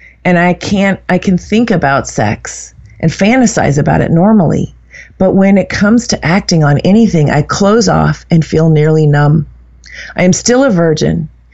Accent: American